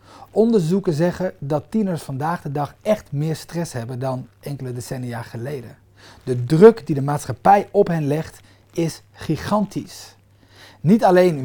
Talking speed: 140 wpm